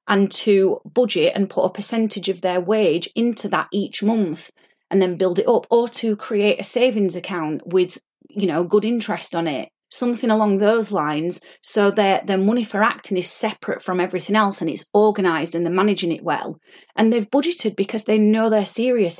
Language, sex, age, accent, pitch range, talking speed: English, female, 30-49, British, 180-215 Hz, 195 wpm